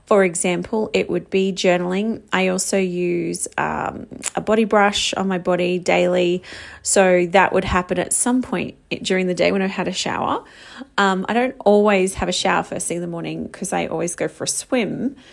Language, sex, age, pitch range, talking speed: English, female, 30-49, 185-225 Hz, 200 wpm